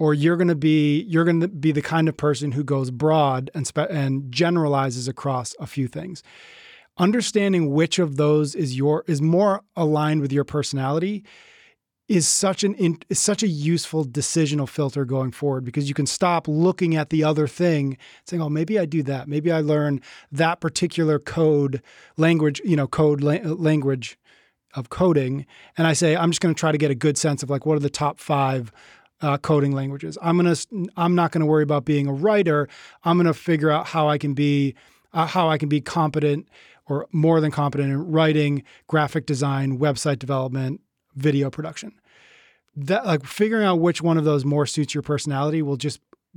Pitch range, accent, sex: 140-165 Hz, American, male